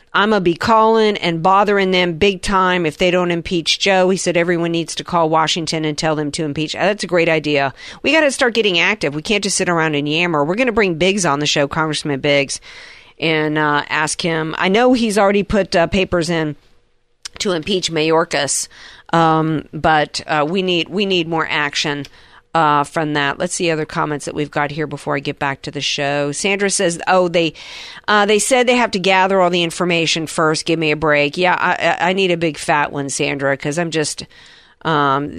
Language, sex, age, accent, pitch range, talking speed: English, female, 50-69, American, 155-190 Hz, 215 wpm